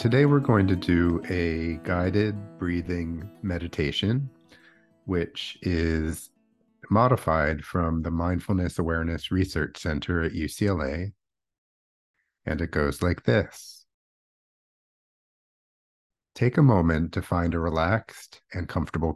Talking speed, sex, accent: 105 wpm, male, American